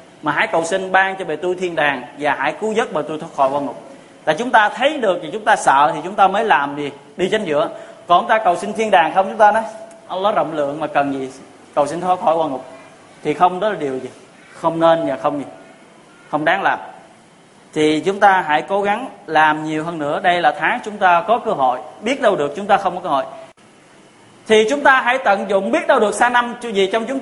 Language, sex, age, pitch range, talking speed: Vietnamese, male, 20-39, 155-215 Hz, 260 wpm